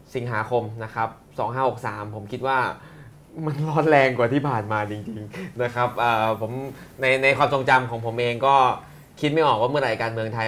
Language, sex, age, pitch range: Thai, male, 20-39, 110-130 Hz